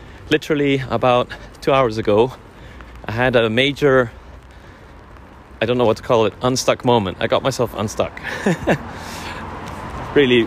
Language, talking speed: English, 130 wpm